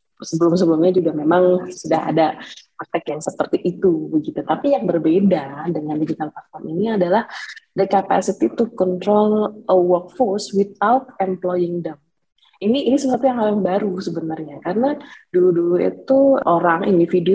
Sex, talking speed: female, 135 wpm